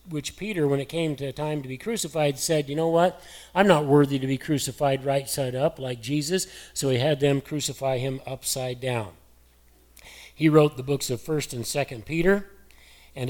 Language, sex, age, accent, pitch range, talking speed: English, male, 40-59, American, 130-155 Hz, 200 wpm